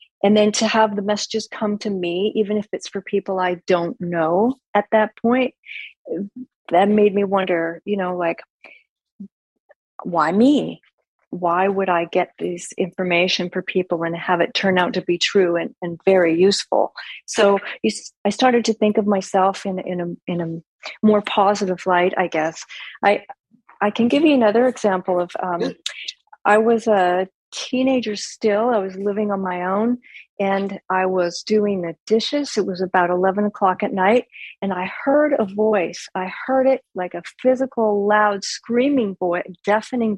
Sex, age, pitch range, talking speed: female, 40-59, 180-215 Hz, 170 wpm